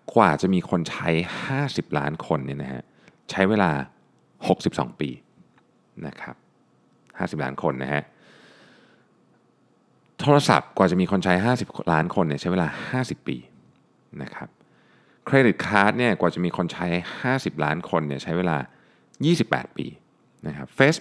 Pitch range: 75-110 Hz